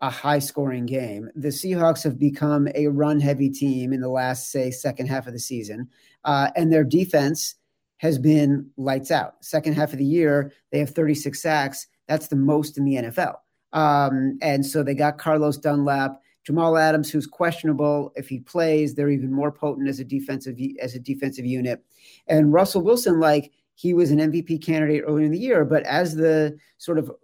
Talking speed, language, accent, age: 185 wpm, English, American, 40-59